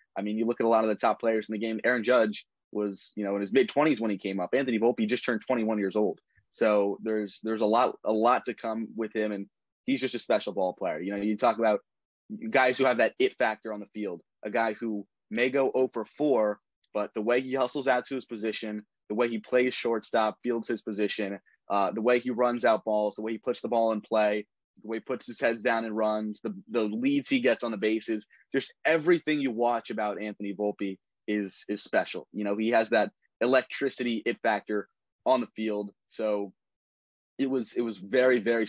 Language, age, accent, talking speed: English, 20-39, American, 235 wpm